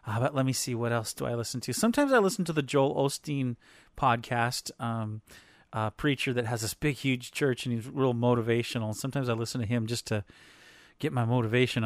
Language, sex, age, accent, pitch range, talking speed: English, male, 30-49, American, 115-150 Hz, 210 wpm